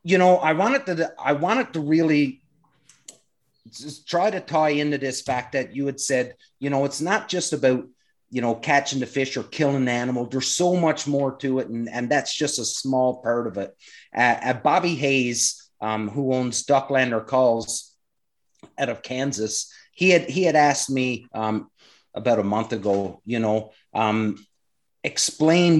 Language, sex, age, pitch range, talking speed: English, male, 30-49, 115-145 Hz, 180 wpm